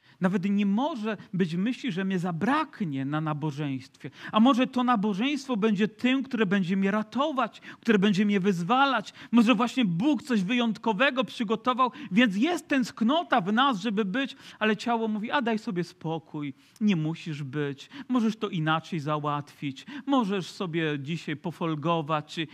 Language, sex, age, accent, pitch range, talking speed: Polish, male, 40-59, native, 150-235 Hz, 145 wpm